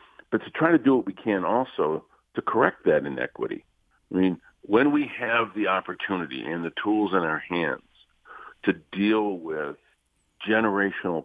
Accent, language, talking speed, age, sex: American, English, 160 wpm, 50-69, male